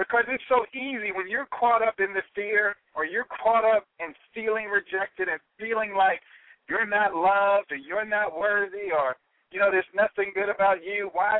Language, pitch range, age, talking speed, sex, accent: English, 195-245 Hz, 50-69, 195 wpm, male, American